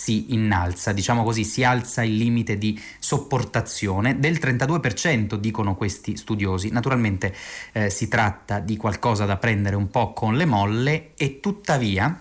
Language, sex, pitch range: Italian, male, 105-130 Hz